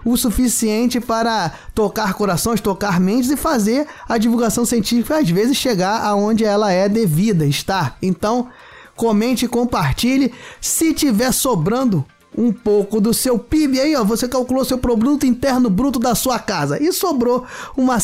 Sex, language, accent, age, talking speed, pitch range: male, Portuguese, Brazilian, 20-39, 155 wpm, 210-265 Hz